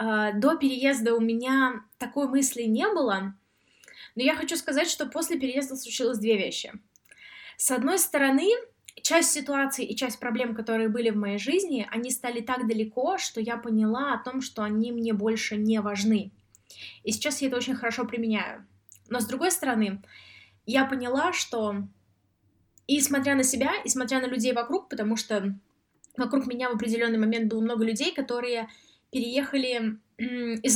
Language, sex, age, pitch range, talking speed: Russian, female, 20-39, 220-270 Hz, 160 wpm